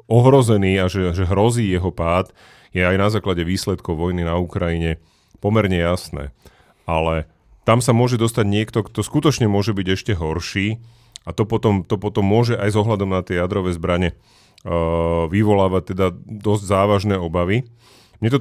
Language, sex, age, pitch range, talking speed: Slovak, male, 30-49, 100-115 Hz, 160 wpm